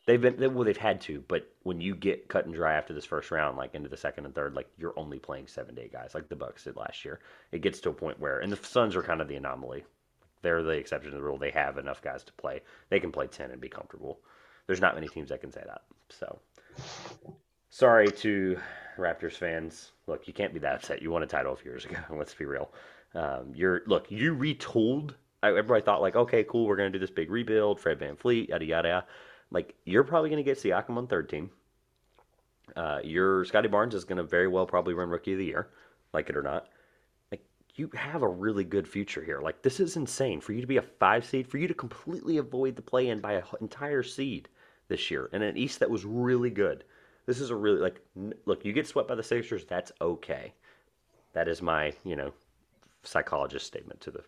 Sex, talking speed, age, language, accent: male, 240 wpm, 30-49, English, American